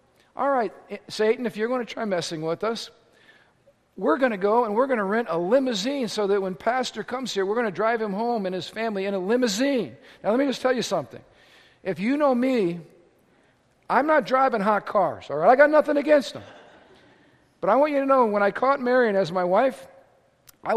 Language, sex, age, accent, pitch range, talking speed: English, male, 50-69, American, 190-245 Hz, 220 wpm